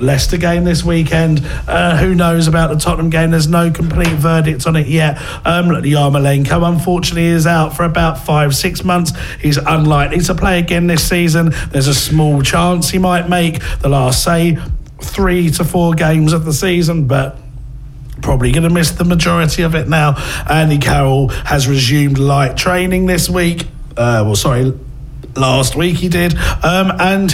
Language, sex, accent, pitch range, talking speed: English, male, British, 140-175 Hz, 170 wpm